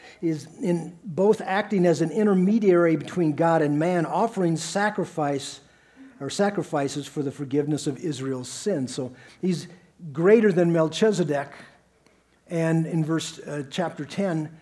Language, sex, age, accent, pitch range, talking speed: English, male, 50-69, American, 130-165 Hz, 130 wpm